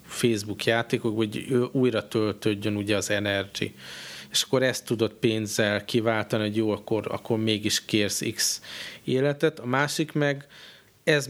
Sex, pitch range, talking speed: male, 105-120 Hz, 140 wpm